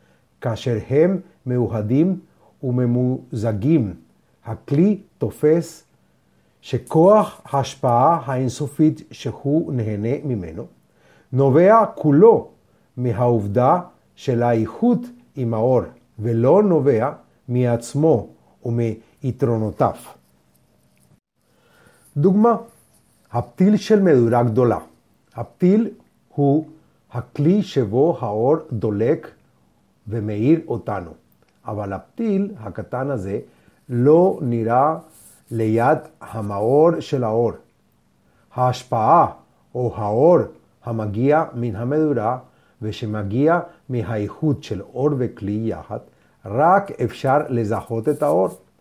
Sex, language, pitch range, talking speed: male, Hebrew, 115-155 Hz, 75 wpm